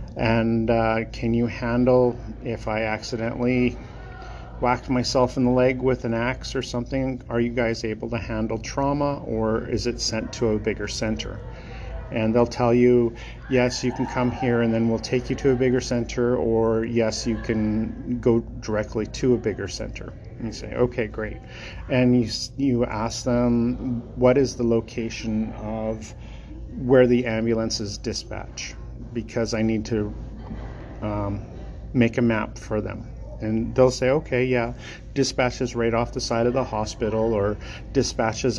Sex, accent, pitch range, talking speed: male, American, 110-125 Hz, 165 wpm